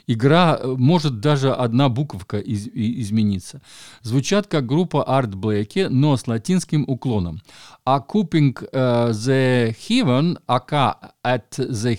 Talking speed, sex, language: 115 wpm, male, Russian